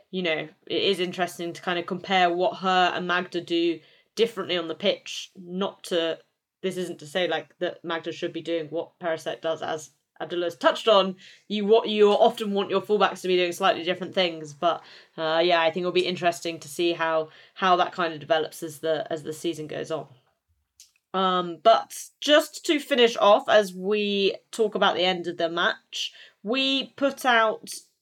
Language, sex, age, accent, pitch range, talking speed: English, female, 20-39, British, 165-210 Hz, 195 wpm